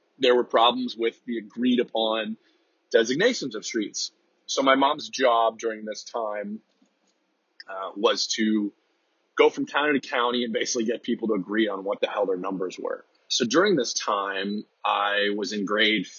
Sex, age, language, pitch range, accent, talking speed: male, 30-49, English, 105-135 Hz, American, 170 wpm